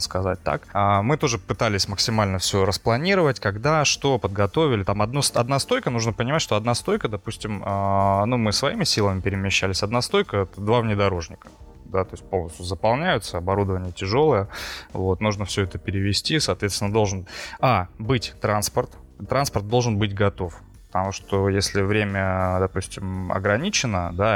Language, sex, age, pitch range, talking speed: Russian, male, 20-39, 95-115 Hz, 145 wpm